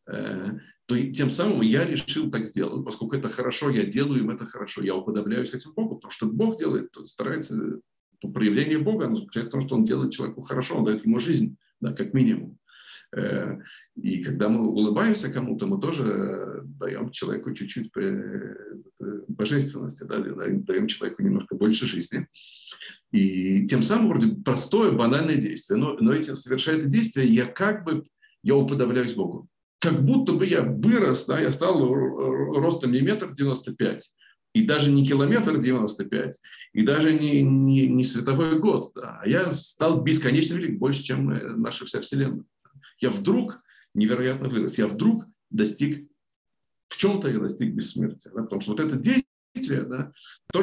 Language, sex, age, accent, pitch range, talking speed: Russian, male, 50-69, native, 120-190 Hz, 155 wpm